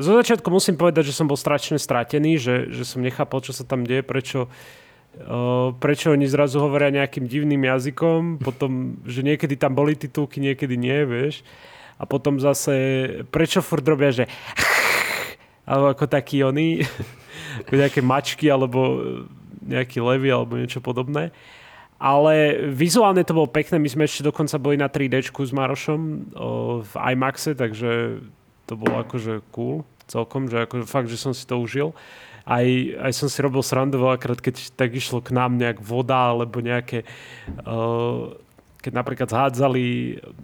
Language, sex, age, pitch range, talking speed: Slovak, male, 30-49, 120-145 Hz, 160 wpm